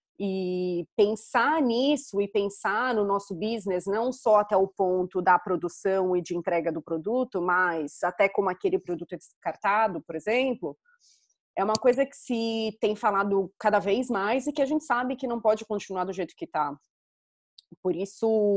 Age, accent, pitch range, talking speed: 20-39, Brazilian, 185-245 Hz, 175 wpm